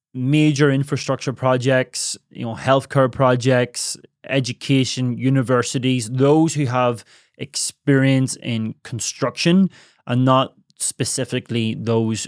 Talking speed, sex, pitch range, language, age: 95 wpm, male, 120-140 Hz, English, 20-39